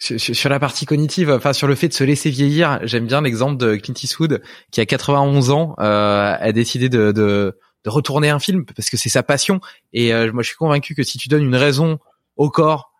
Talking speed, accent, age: 230 wpm, French, 20-39